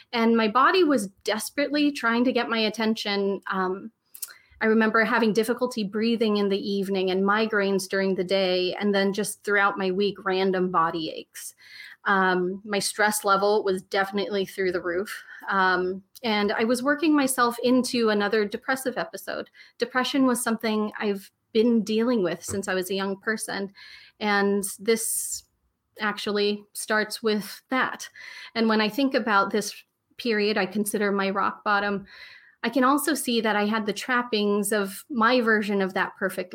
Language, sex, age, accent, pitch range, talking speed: English, female, 30-49, American, 195-230 Hz, 160 wpm